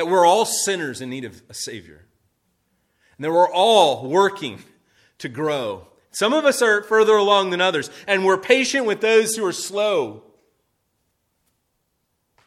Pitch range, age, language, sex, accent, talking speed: 130-215 Hz, 30-49, English, male, American, 155 wpm